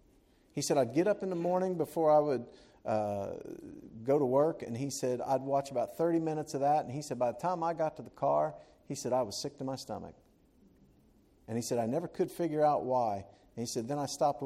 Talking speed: 245 wpm